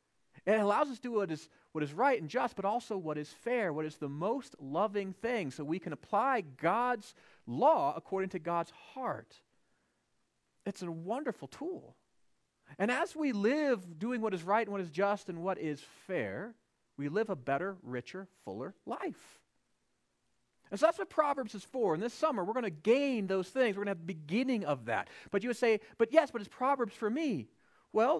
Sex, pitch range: male, 190-250 Hz